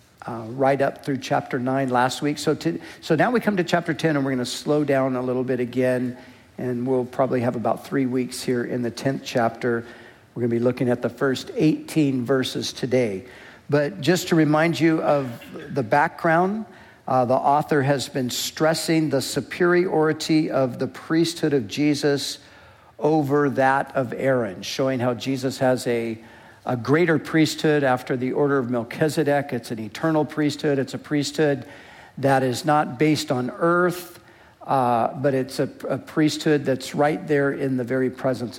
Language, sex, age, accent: English, male, 60-79, American